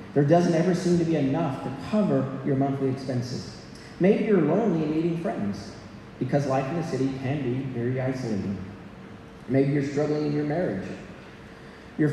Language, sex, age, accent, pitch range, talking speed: English, male, 40-59, American, 135-180 Hz, 170 wpm